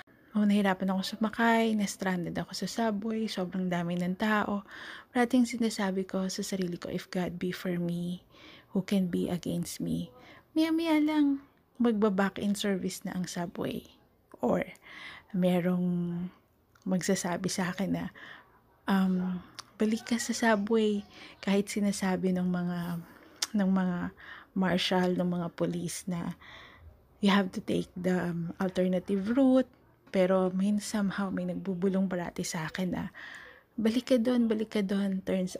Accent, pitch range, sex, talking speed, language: native, 180-220 Hz, female, 135 wpm, Filipino